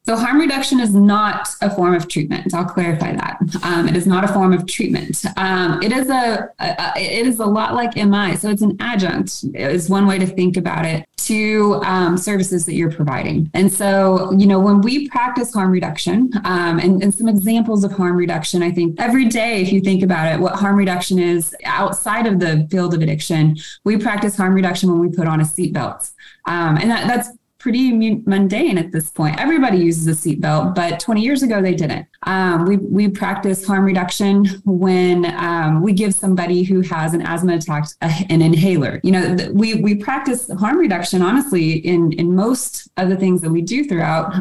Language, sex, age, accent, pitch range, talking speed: English, female, 20-39, American, 170-205 Hz, 205 wpm